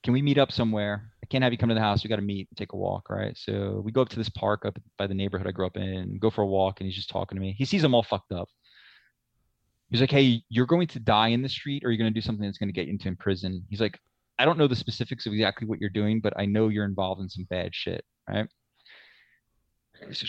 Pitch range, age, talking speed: 95-115 Hz, 20-39, 295 wpm